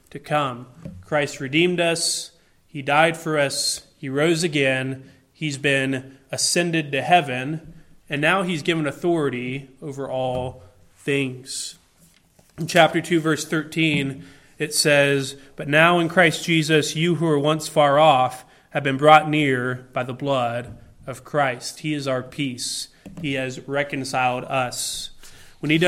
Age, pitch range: 30-49, 135-160 Hz